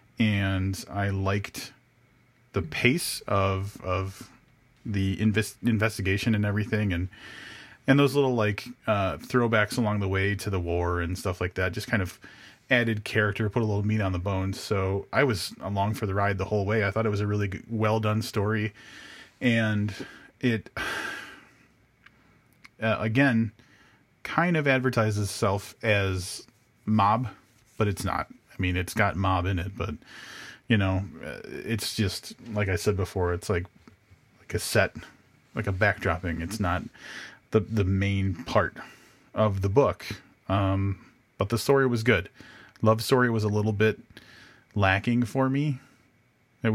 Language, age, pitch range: English, 30-49, 95-115 Hz